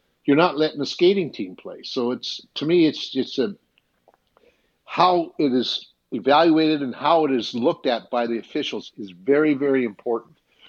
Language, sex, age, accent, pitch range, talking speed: English, male, 60-79, American, 115-155 Hz, 170 wpm